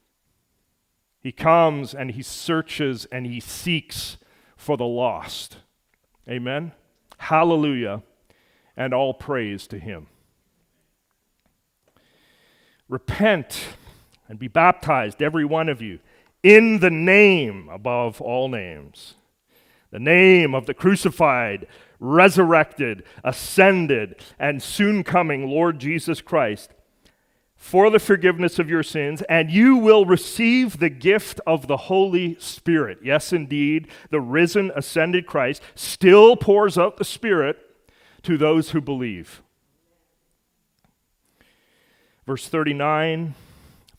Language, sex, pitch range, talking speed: English, male, 135-185 Hz, 105 wpm